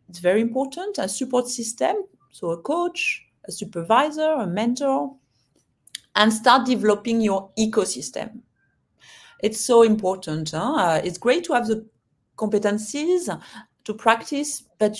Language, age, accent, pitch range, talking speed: English, 40-59, French, 185-250 Hz, 130 wpm